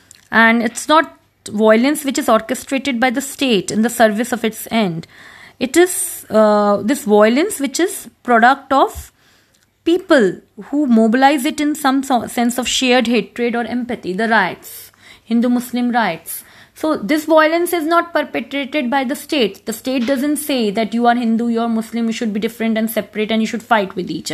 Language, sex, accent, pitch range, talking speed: English, female, Indian, 215-275 Hz, 180 wpm